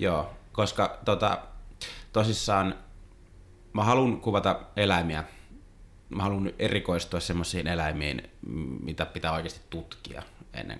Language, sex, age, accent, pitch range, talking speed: Finnish, male, 30-49, native, 85-95 Hz, 100 wpm